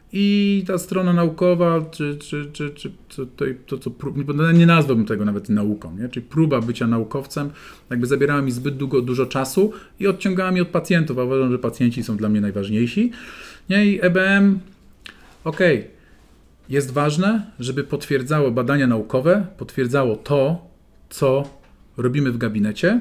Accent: native